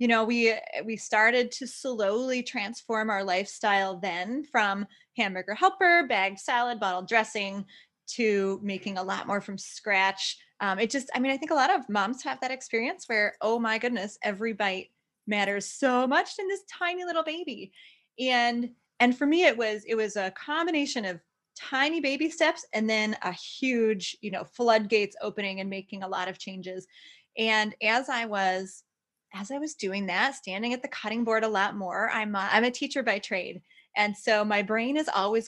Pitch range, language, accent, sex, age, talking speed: 200-255 Hz, English, American, female, 20-39, 190 wpm